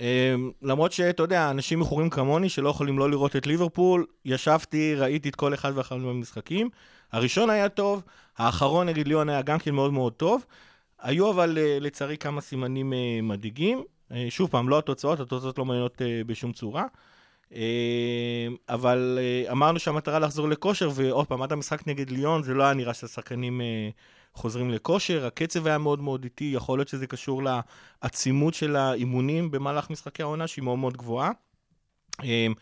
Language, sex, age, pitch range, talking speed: Hebrew, male, 30-49, 125-155 Hz, 170 wpm